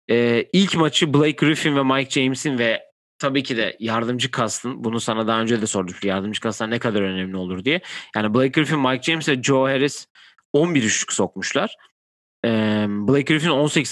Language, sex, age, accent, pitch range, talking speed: Turkish, male, 40-59, native, 115-155 Hz, 180 wpm